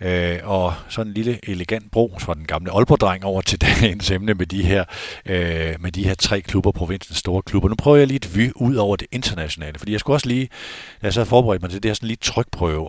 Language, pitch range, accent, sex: Danish, 85-110 Hz, native, male